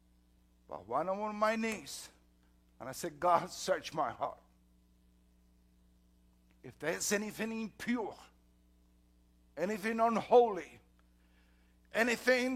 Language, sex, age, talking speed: English, male, 60-79, 95 wpm